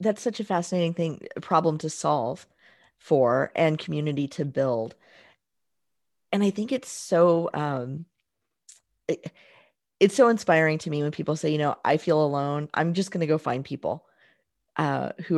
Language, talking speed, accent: English, 170 wpm, American